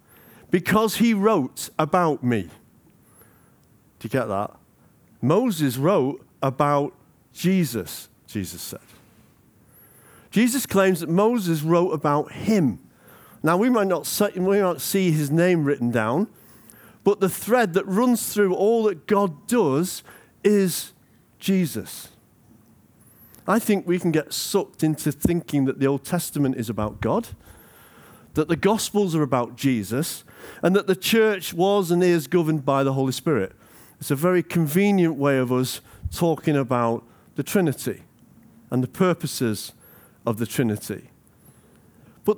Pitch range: 135-195 Hz